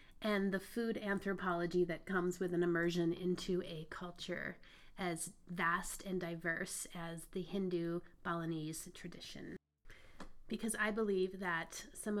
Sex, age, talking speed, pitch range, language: female, 30-49, 130 wpm, 175-205 Hz, English